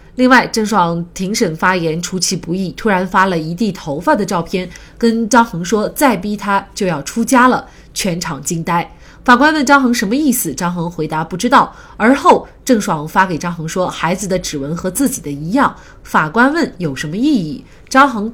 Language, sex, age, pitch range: Chinese, female, 30-49, 165-230 Hz